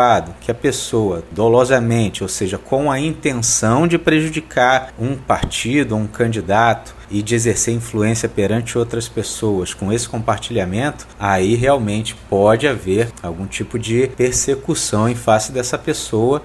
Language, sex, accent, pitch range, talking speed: Portuguese, male, Brazilian, 105-145 Hz, 135 wpm